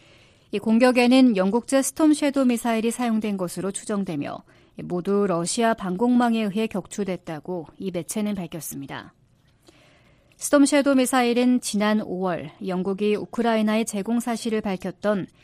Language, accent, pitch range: Korean, native, 190-245 Hz